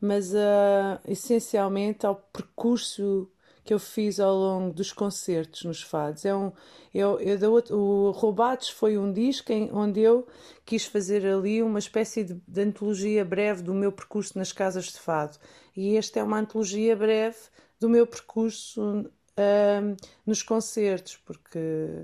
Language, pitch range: Portuguese, 175-210 Hz